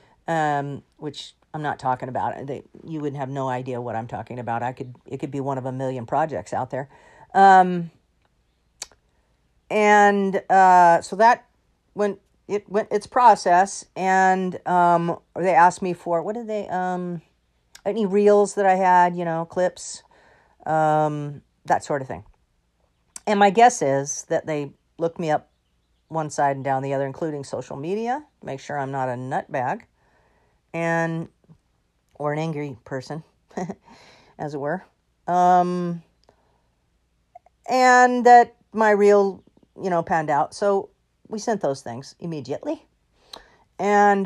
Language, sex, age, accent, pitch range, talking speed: English, female, 50-69, American, 135-190 Hz, 145 wpm